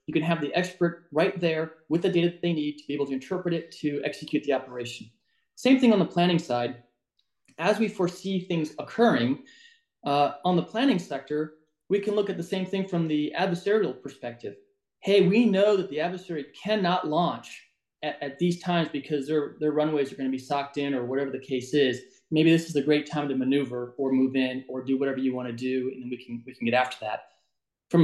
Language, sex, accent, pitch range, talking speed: English, male, American, 140-175 Hz, 215 wpm